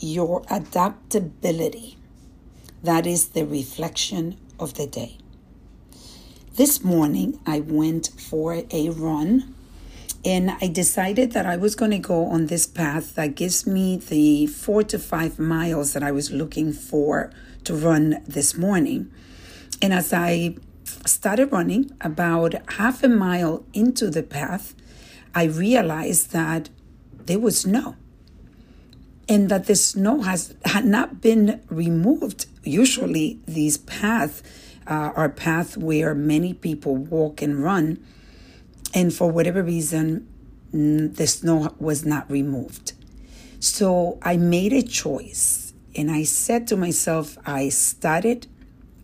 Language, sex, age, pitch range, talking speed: English, female, 60-79, 150-195 Hz, 125 wpm